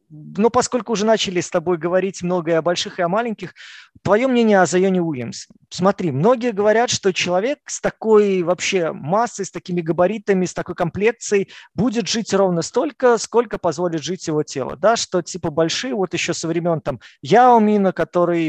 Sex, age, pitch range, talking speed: male, 20-39, 155-200 Hz, 170 wpm